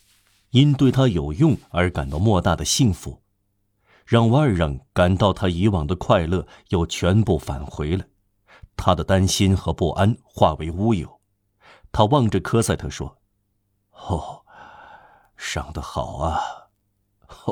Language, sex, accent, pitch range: Chinese, male, native, 90-110 Hz